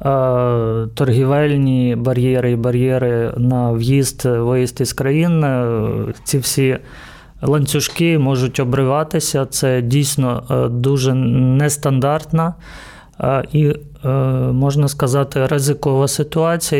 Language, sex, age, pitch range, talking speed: Ukrainian, male, 30-49, 130-150 Hz, 80 wpm